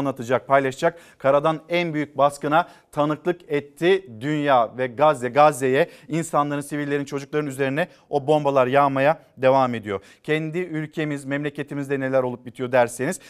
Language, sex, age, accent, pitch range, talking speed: Turkish, male, 50-69, native, 135-160 Hz, 125 wpm